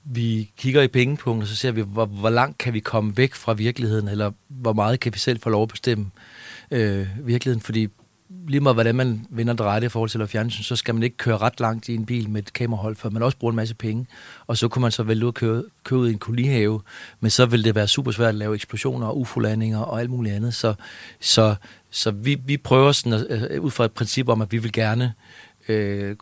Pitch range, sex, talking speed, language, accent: 105-120 Hz, male, 240 wpm, Danish, native